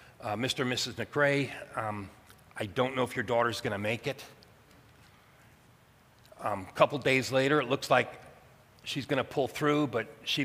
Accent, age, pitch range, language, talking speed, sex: American, 40-59, 115-135 Hz, English, 180 wpm, male